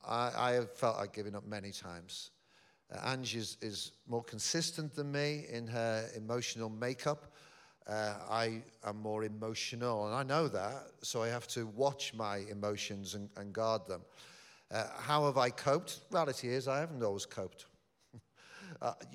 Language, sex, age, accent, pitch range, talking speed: English, male, 50-69, British, 100-135 Hz, 160 wpm